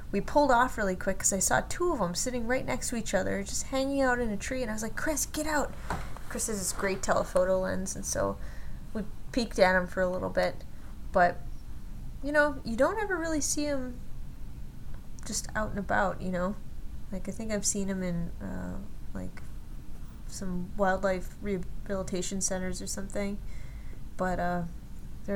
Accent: American